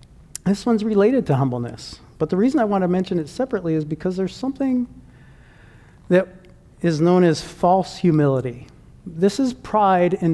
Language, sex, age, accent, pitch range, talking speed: English, male, 50-69, American, 145-185 Hz, 165 wpm